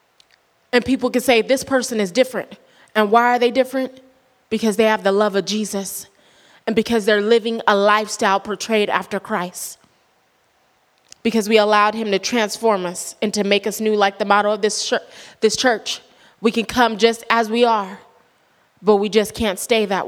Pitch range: 205-245 Hz